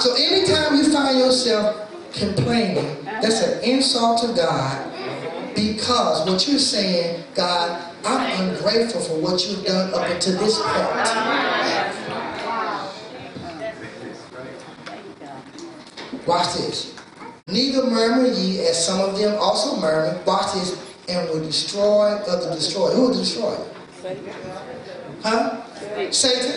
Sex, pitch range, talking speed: male, 195-295 Hz, 110 wpm